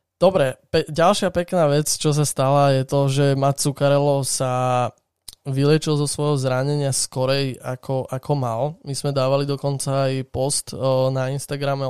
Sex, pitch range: male, 130-145 Hz